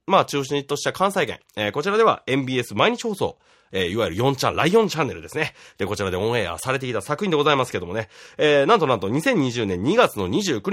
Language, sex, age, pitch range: Japanese, male, 30-49, 95-150 Hz